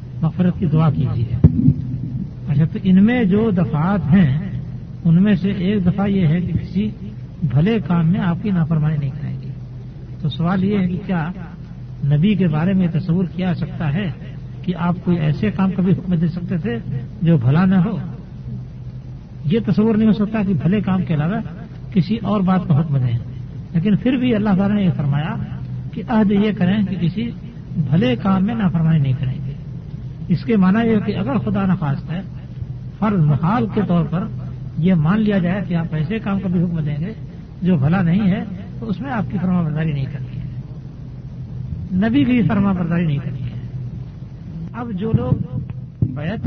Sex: male